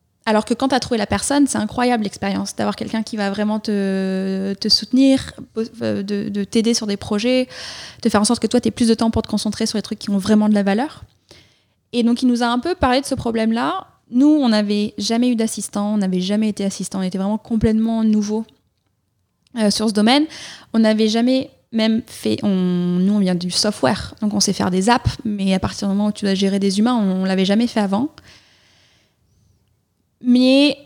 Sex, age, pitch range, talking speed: female, 20-39, 200-240 Hz, 220 wpm